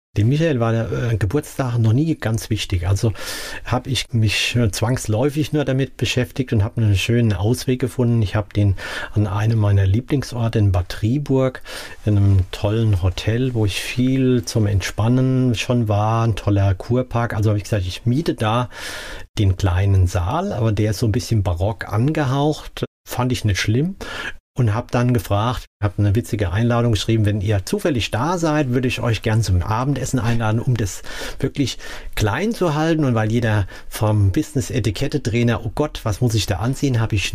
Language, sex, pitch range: German, male, 105-130 Hz